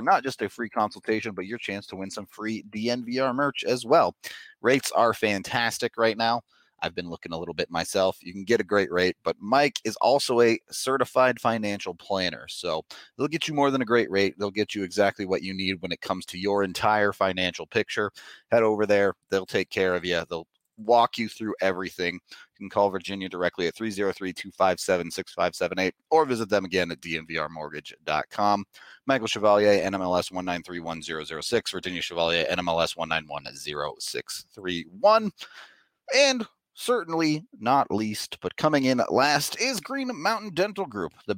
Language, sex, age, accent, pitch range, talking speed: English, male, 30-49, American, 95-130 Hz, 165 wpm